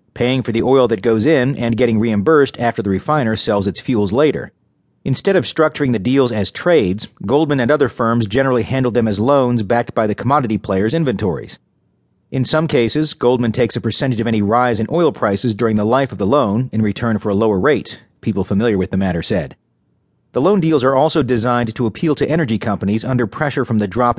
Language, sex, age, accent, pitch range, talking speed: English, male, 40-59, American, 110-135 Hz, 215 wpm